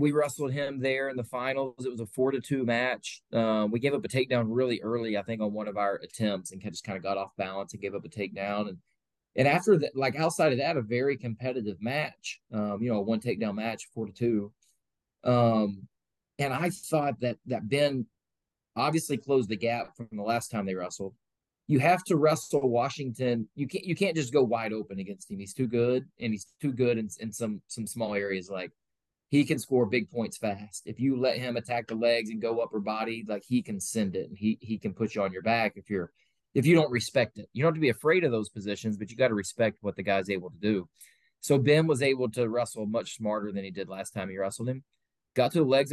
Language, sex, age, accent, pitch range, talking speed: English, male, 20-39, American, 105-130 Hz, 250 wpm